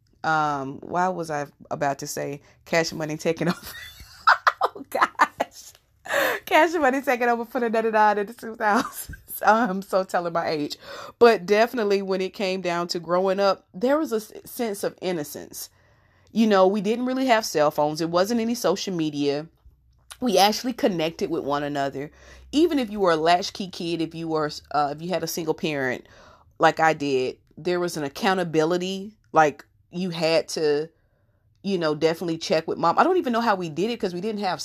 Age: 30-49